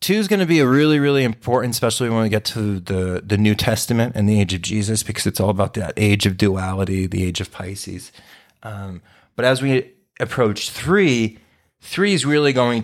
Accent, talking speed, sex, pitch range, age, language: American, 210 wpm, male, 95-110 Hz, 30-49, English